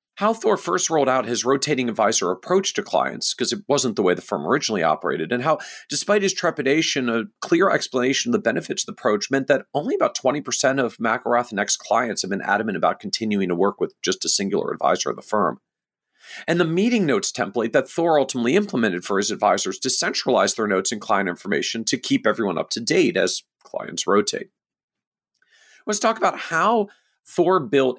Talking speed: 195 wpm